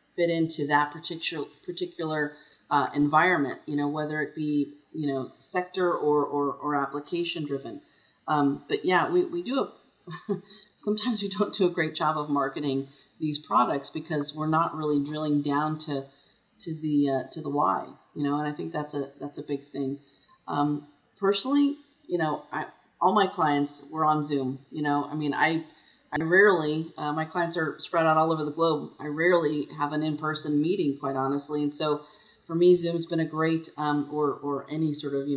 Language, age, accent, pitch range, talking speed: English, 30-49, American, 145-180 Hz, 190 wpm